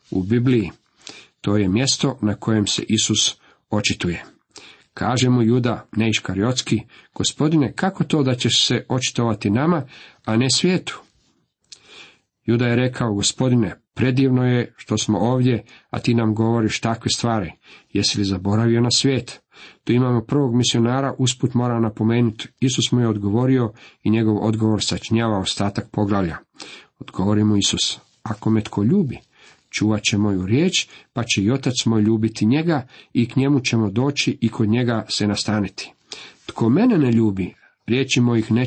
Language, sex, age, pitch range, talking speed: Croatian, male, 50-69, 110-130 Hz, 150 wpm